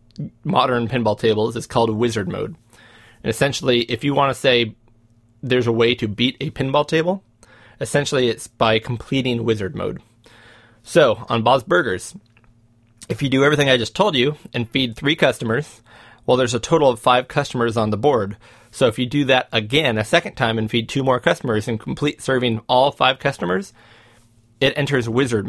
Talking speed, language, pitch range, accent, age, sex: 180 wpm, English, 115-125 Hz, American, 30-49, male